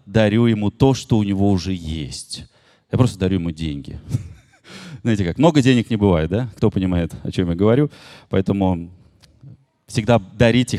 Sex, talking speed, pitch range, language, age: male, 160 wpm, 110-150 Hz, Russian, 30-49